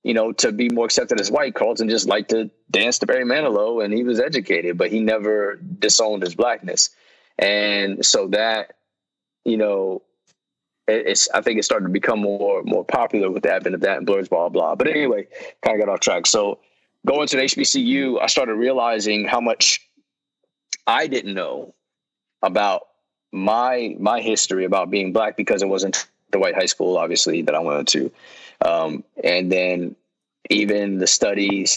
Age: 20-39